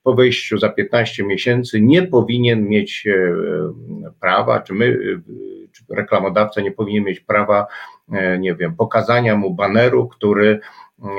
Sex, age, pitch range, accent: male, 50-69, 95-120 Hz, native